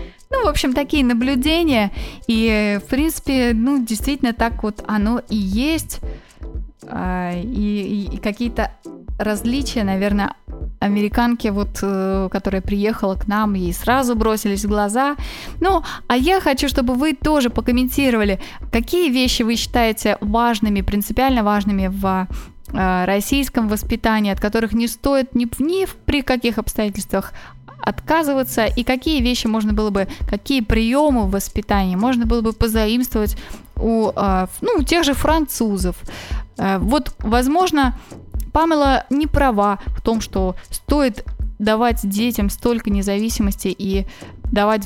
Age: 20-39